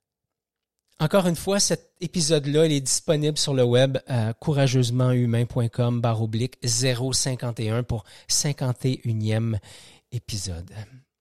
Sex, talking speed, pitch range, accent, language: male, 95 wpm, 120-165 Hz, Canadian, French